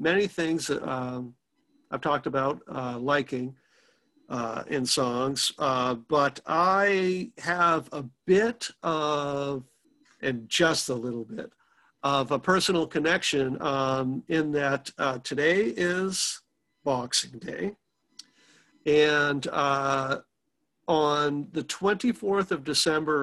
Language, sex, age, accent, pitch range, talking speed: English, male, 50-69, American, 140-175 Hz, 110 wpm